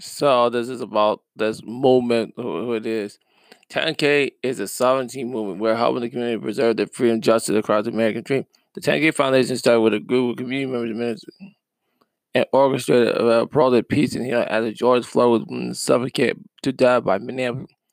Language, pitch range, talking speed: English, 120-135 Hz, 175 wpm